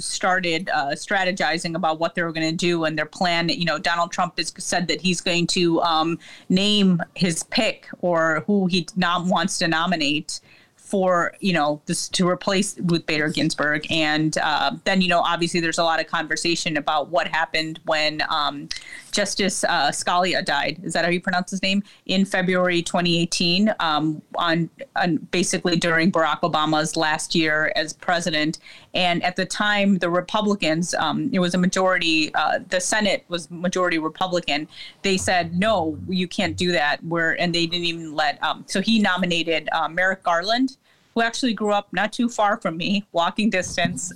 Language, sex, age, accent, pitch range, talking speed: English, female, 30-49, American, 165-195 Hz, 175 wpm